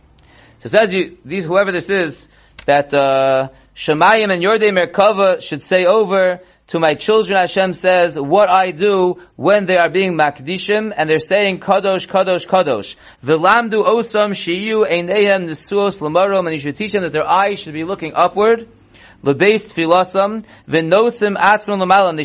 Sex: male